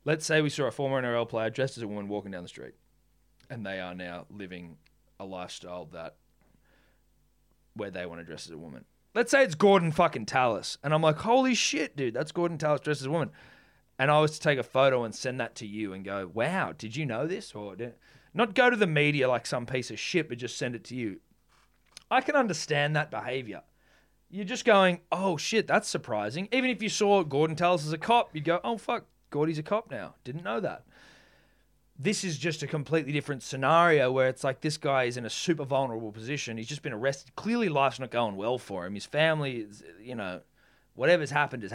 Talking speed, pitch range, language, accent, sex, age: 225 wpm, 115-175 Hz, English, Australian, male, 20-39